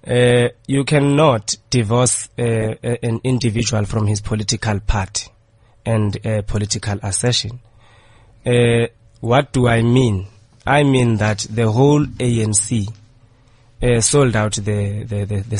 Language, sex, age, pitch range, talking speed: English, male, 30-49, 105-120 Hz, 125 wpm